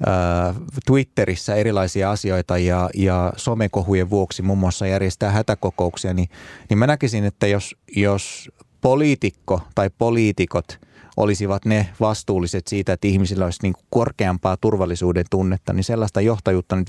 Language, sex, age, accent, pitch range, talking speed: Finnish, male, 30-49, native, 90-110 Hz, 130 wpm